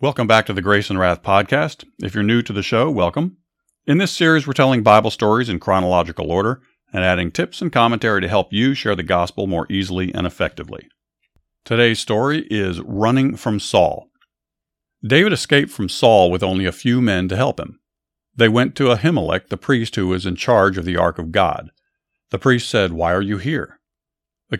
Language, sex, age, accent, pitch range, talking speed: English, male, 50-69, American, 95-125 Hz, 200 wpm